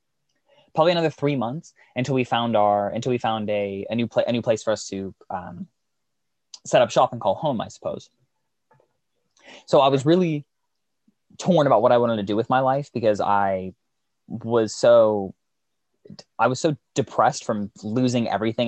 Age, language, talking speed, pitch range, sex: 20-39, English, 175 wpm, 105-130 Hz, male